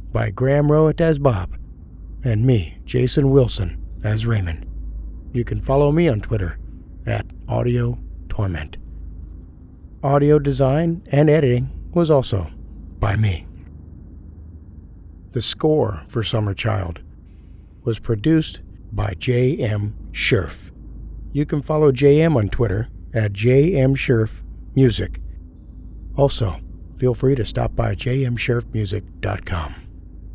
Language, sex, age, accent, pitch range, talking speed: English, male, 50-69, American, 85-130 Hz, 110 wpm